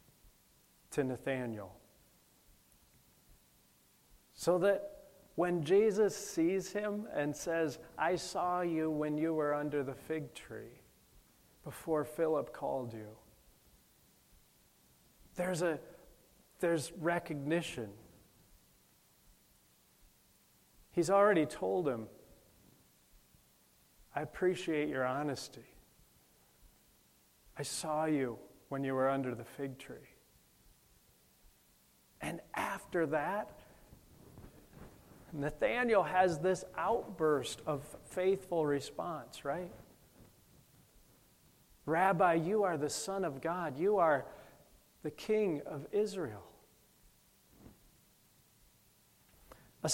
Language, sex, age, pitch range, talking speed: English, male, 40-59, 125-180 Hz, 85 wpm